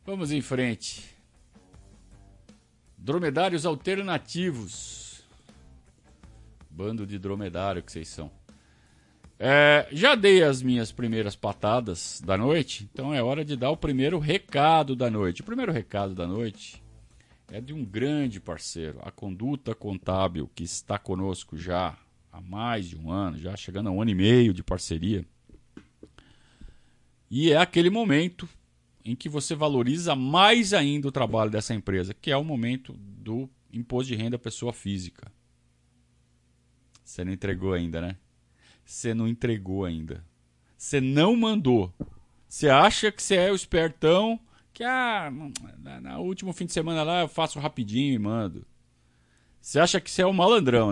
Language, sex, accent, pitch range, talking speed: Portuguese, male, Brazilian, 90-150 Hz, 145 wpm